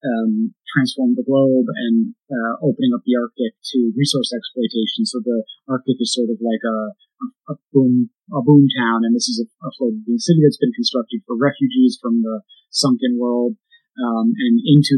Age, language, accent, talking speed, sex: 30-49, English, American, 175 wpm, male